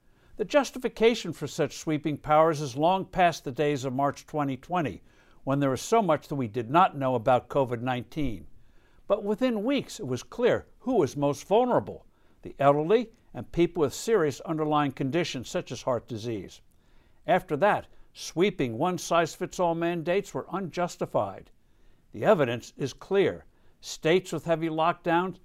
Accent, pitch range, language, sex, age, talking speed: American, 135-190 Hz, English, male, 60-79, 160 wpm